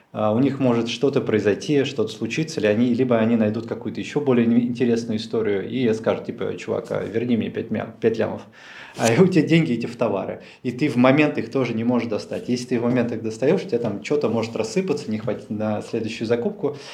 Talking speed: 215 wpm